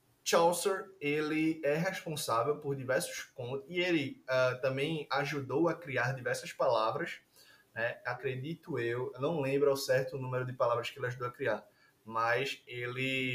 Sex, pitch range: male, 125-160 Hz